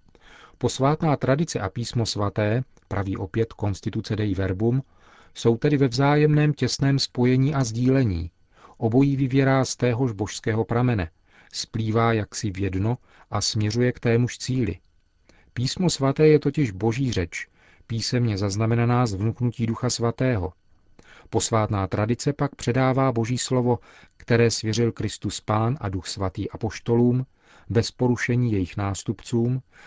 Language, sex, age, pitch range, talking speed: Czech, male, 40-59, 100-125 Hz, 125 wpm